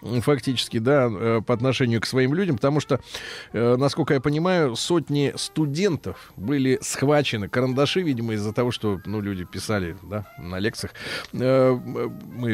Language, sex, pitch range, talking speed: Russian, male, 110-140 Hz, 135 wpm